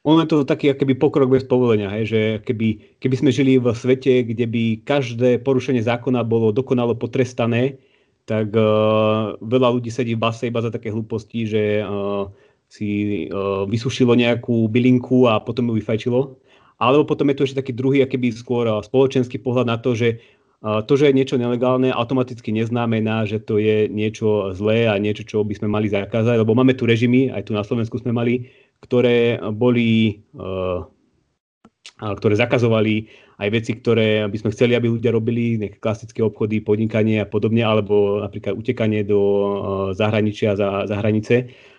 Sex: male